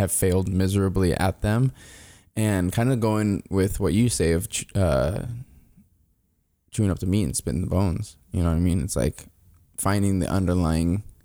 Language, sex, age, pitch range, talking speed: English, male, 20-39, 90-105 Hz, 175 wpm